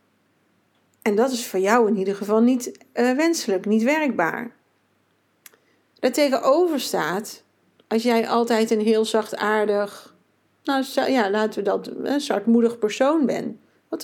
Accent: Dutch